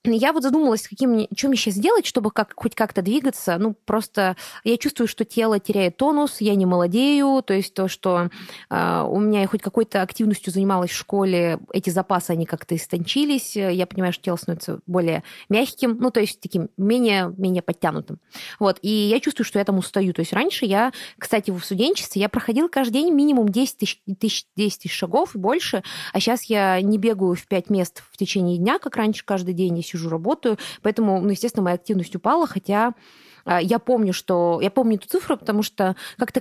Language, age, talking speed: Russian, 20-39, 195 wpm